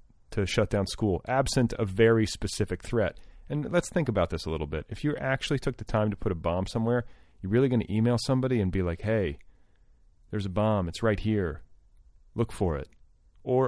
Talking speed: 210 wpm